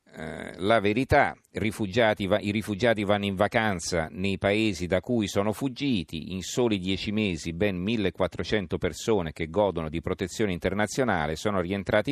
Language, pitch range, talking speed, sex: Italian, 90-105 Hz, 140 wpm, male